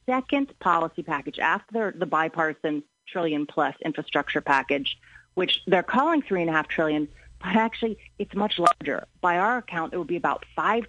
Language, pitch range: English, 160-215 Hz